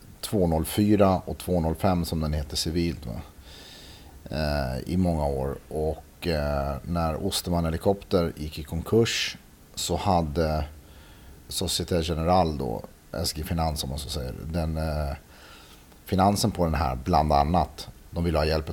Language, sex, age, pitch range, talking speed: Swedish, male, 40-59, 75-90 Hz, 135 wpm